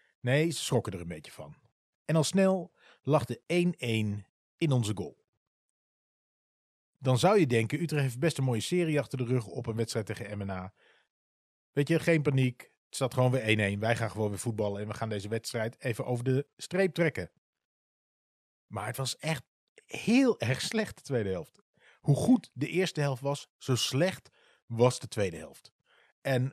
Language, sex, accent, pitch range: Dutch, male, Dutch, 115-155 Hz